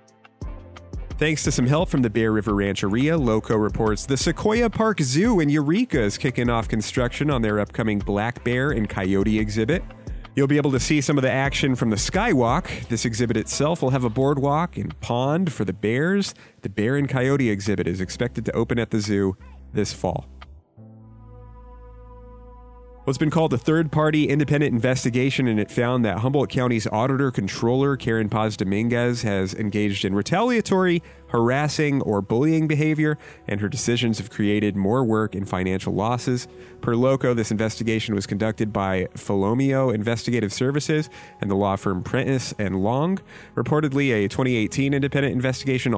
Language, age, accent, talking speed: English, 30-49, American, 165 wpm